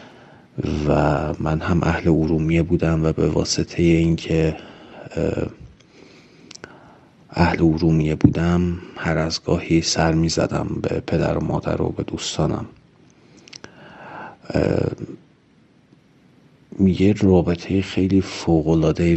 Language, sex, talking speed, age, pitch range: Persian, male, 90 wpm, 40-59, 80-85 Hz